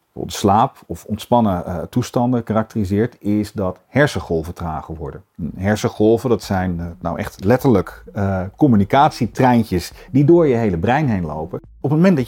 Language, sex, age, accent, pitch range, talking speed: Dutch, male, 40-59, Dutch, 95-130 Hz, 160 wpm